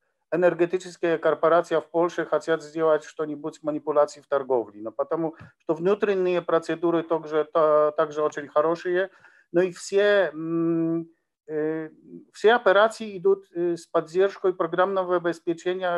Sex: male